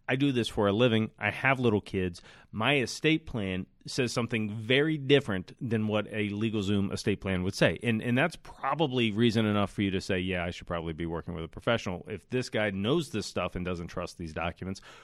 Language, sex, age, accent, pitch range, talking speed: English, male, 30-49, American, 100-125 Hz, 225 wpm